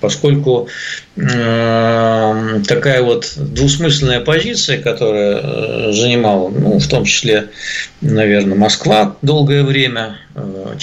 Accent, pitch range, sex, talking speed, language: native, 115-150 Hz, male, 95 wpm, Russian